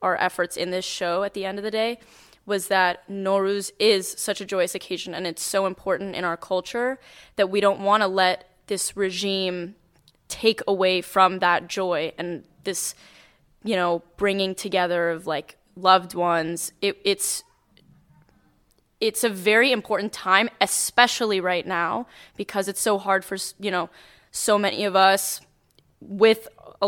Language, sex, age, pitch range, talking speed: English, female, 10-29, 180-205 Hz, 160 wpm